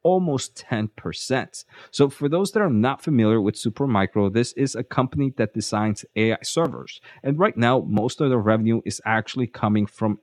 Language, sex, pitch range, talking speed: English, male, 105-130 Hz, 180 wpm